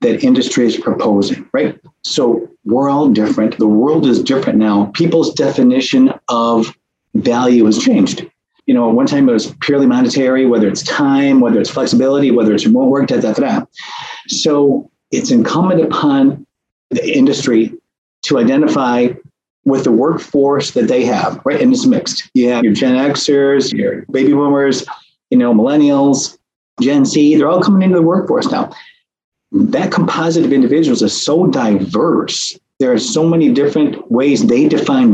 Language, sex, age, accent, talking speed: English, male, 40-59, American, 165 wpm